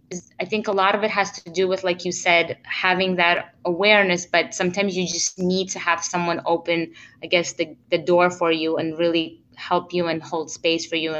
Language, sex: English, female